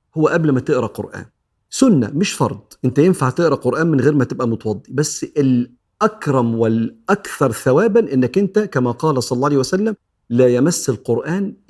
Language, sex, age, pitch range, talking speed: Arabic, male, 50-69, 115-160 Hz, 165 wpm